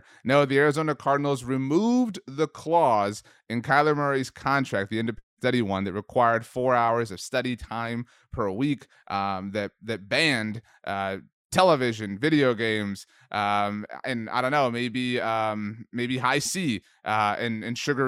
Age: 30-49